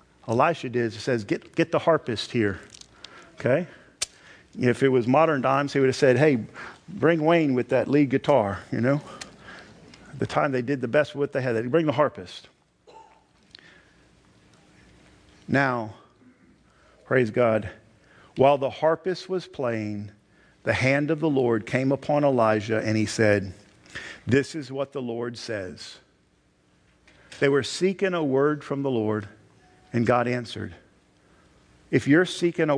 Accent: American